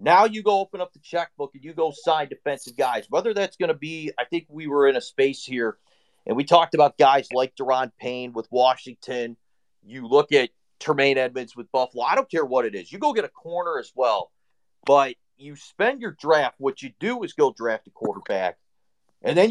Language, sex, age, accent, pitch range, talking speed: English, male, 40-59, American, 135-195 Hz, 220 wpm